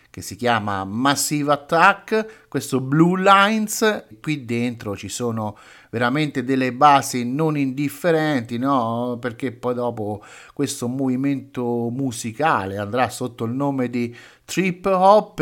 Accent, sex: native, male